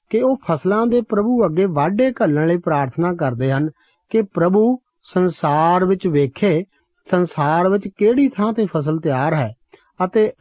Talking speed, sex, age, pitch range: 150 wpm, male, 50-69, 155-215 Hz